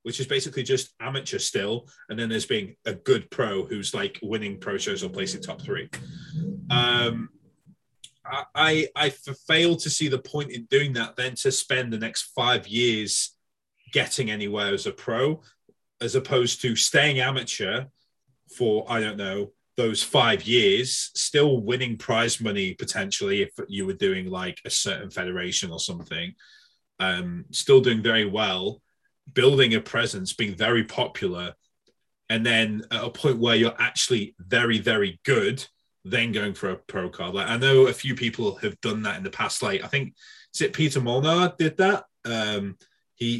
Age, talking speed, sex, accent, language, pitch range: 20-39, 170 wpm, male, British, English, 110-150 Hz